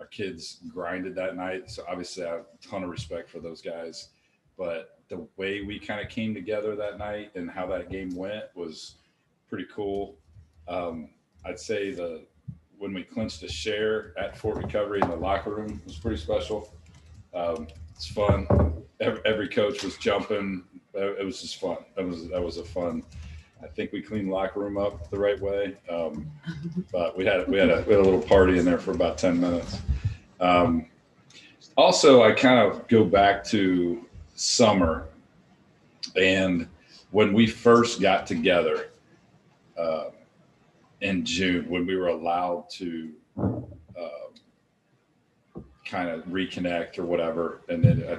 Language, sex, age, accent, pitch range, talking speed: English, male, 40-59, American, 85-100 Hz, 165 wpm